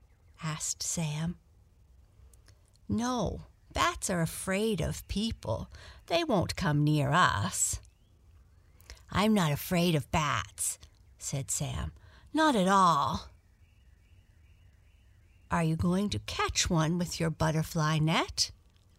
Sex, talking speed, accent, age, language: female, 105 wpm, American, 60-79, English